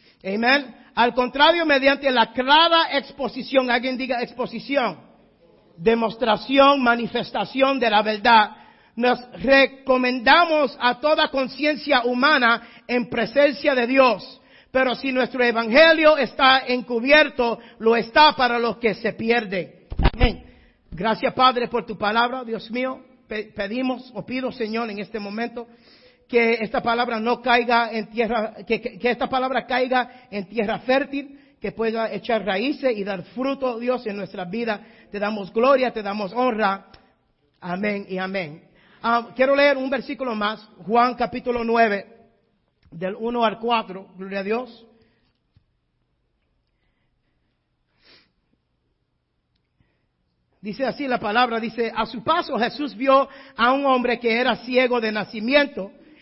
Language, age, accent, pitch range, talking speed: Spanish, 50-69, American, 220-260 Hz, 130 wpm